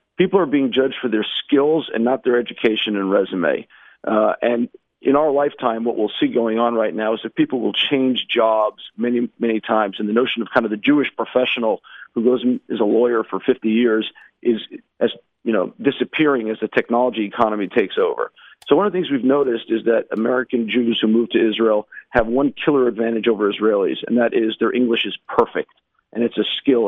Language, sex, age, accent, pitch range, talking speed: English, male, 50-69, American, 115-140 Hz, 210 wpm